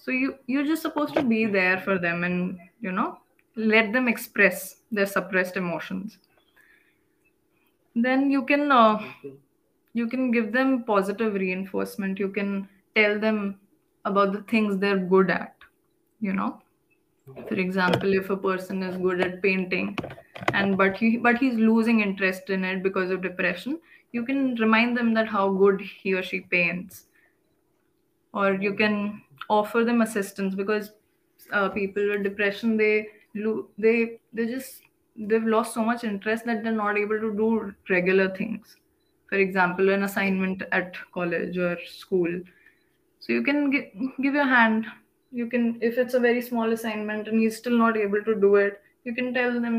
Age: 20-39